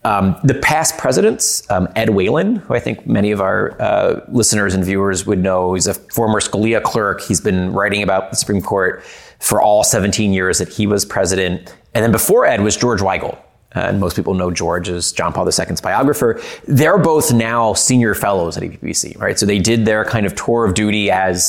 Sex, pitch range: male, 95-110 Hz